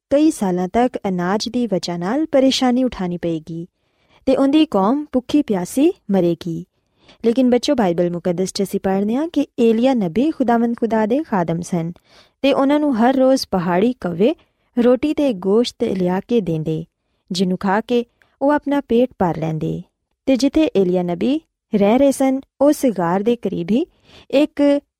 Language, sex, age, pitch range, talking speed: Punjabi, female, 20-39, 185-265 Hz, 145 wpm